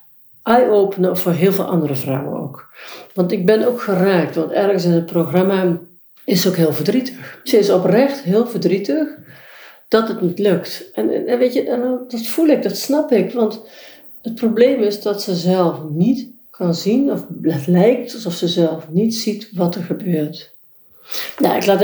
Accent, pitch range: Dutch, 160-215 Hz